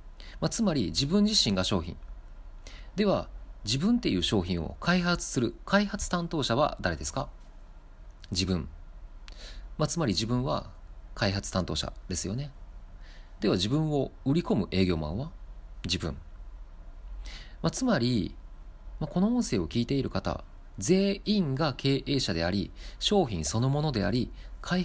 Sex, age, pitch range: male, 40-59, 85-135 Hz